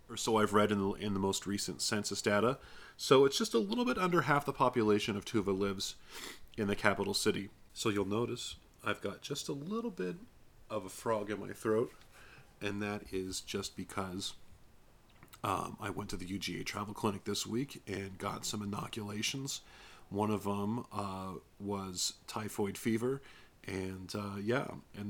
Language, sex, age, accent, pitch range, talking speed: English, male, 40-59, American, 100-115 Hz, 175 wpm